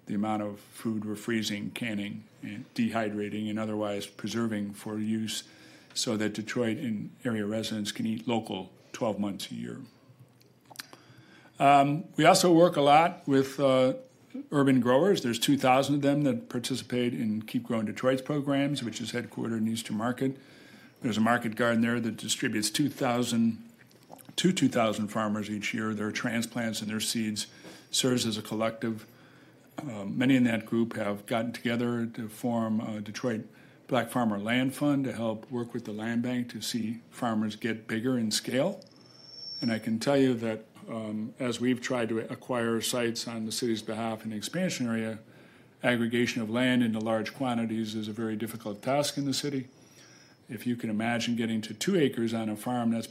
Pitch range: 110-130 Hz